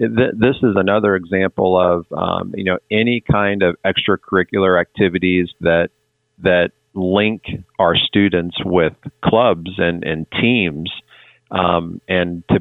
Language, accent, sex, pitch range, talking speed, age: English, American, male, 85-100 Hz, 125 wpm, 40-59